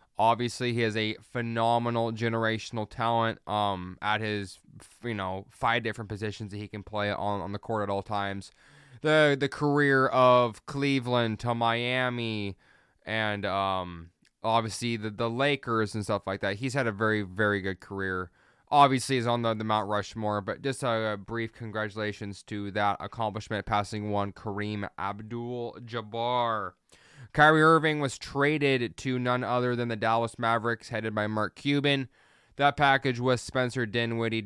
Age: 20-39